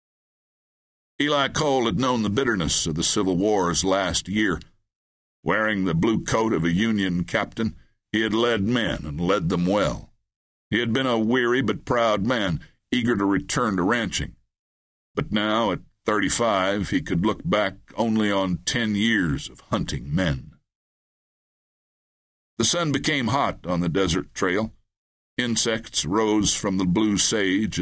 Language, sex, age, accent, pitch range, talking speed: English, male, 60-79, American, 85-110 Hz, 150 wpm